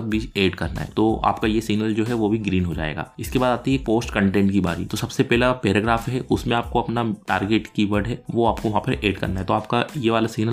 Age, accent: 20-39, native